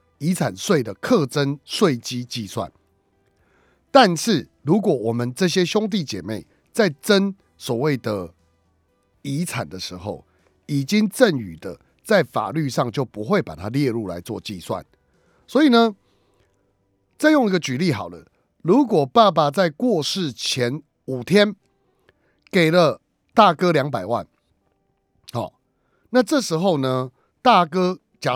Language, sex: Chinese, male